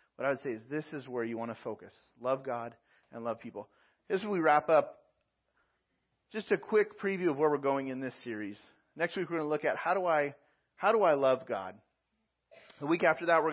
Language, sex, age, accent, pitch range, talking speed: English, male, 40-59, American, 130-165 Hz, 230 wpm